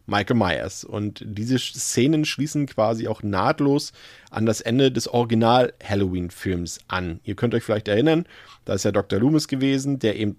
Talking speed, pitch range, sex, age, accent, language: 160 wpm, 100-130 Hz, male, 40-59, German, German